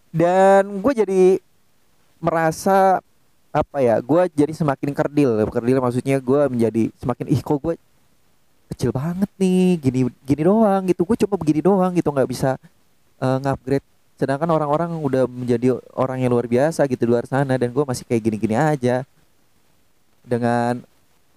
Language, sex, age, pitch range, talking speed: Indonesian, male, 20-39, 130-175 Hz, 145 wpm